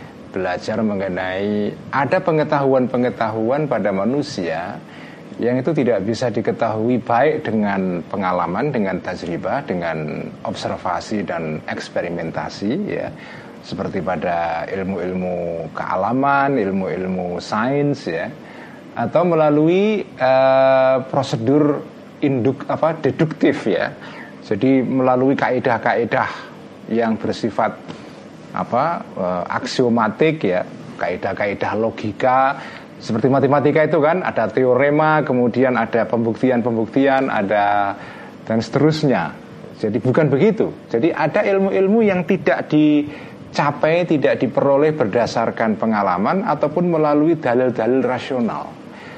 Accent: native